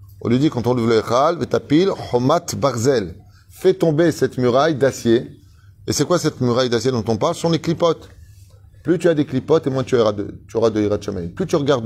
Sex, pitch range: male, 100-145 Hz